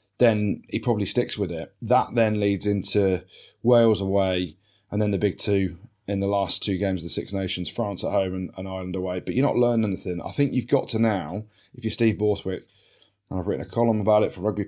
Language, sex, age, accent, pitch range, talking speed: English, male, 20-39, British, 95-115 Hz, 235 wpm